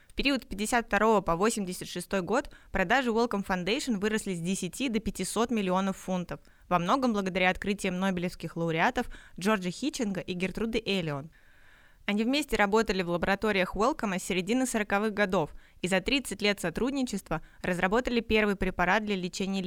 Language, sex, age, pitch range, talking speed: Russian, female, 20-39, 180-220 Hz, 145 wpm